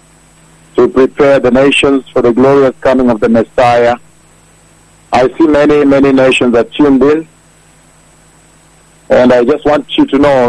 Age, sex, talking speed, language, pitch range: 50-69, male, 150 wpm, English, 120-155 Hz